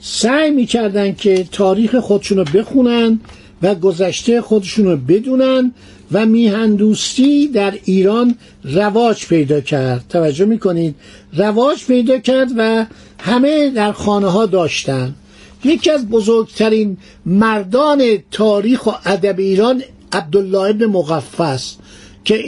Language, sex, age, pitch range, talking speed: Persian, male, 60-79, 185-230 Hz, 110 wpm